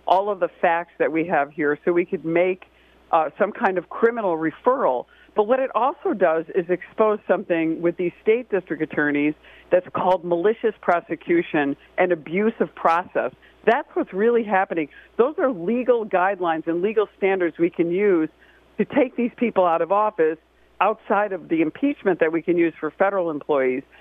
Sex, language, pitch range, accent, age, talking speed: female, English, 165-215 Hz, American, 50-69, 175 wpm